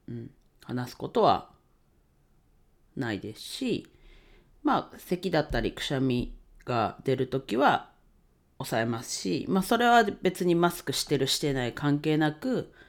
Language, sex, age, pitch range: Japanese, female, 40-59, 120-190 Hz